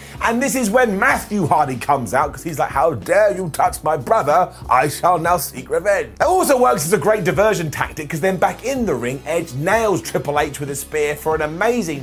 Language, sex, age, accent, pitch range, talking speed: English, male, 30-49, British, 150-210 Hz, 230 wpm